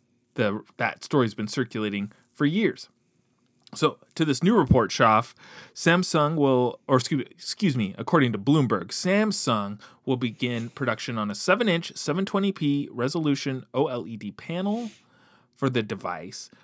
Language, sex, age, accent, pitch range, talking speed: English, male, 30-49, American, 120-180 Hz, 130 wpm